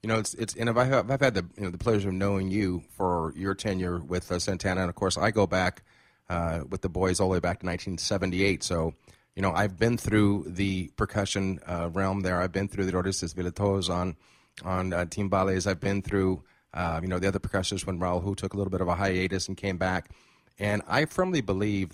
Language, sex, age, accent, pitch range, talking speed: English, male, 30-49, American, 90-100 Hz, 240 wpm